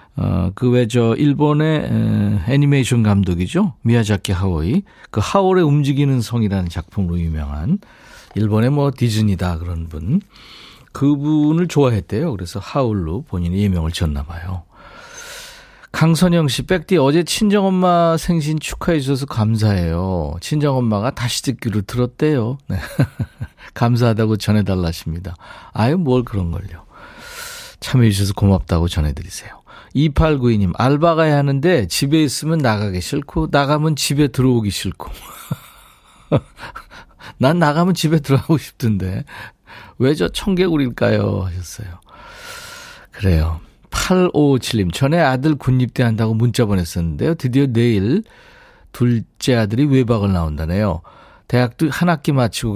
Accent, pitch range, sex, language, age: native, 100-150 Hz, male, Korean, 40-59